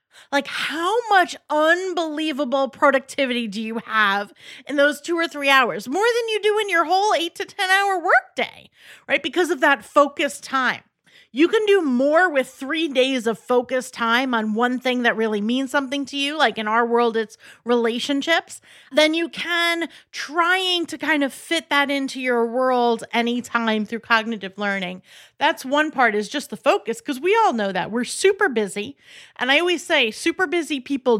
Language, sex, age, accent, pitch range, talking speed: English, female, 30-49, American, 230-310 Hz, 180 wpm